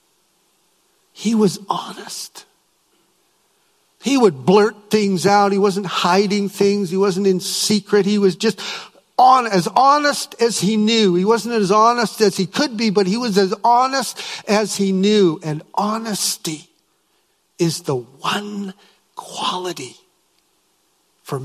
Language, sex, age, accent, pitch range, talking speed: English, male, 60-79, American, 175-215 Hz, 130 wpm